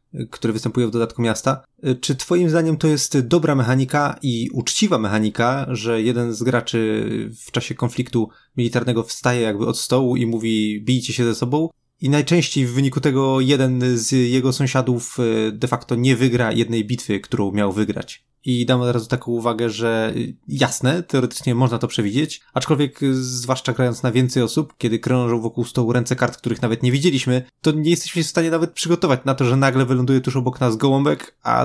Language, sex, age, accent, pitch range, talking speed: Polish, male, 20-39, native, 120-140 Hz, 180 wpm